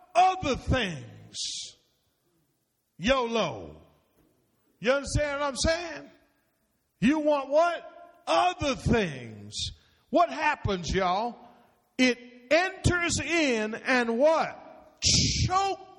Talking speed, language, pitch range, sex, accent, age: 85 wpm, English, 220-310 Hz, male, American, 50-69